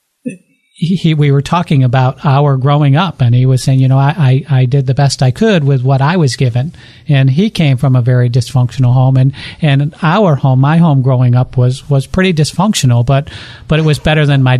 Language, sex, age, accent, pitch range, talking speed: English, male, 50-69, American, 125-145 Hz, 220 wpm